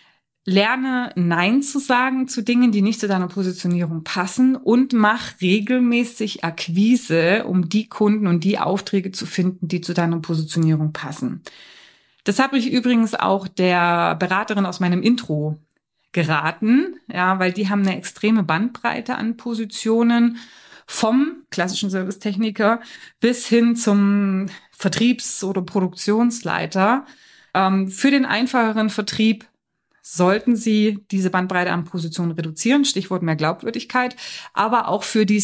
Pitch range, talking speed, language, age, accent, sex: 175-220 Hz, 130 wpm, German, 30-49, German, female